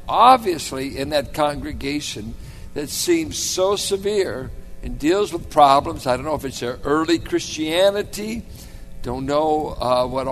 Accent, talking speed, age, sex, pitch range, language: American, 140 wpm, 60-79, male, 130-180 Hz, English